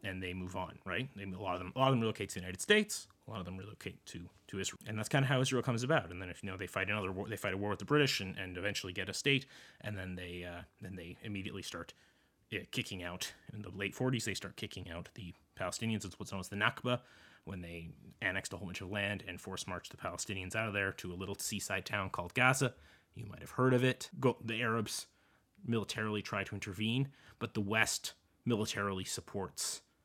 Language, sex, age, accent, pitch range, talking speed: English, male, 30-49, American, 90-115 Hz, 245 wpm